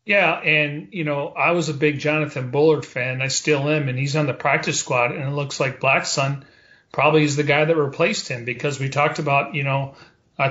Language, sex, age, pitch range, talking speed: English, male, 40-59, 130-155 Hz, 230 wpm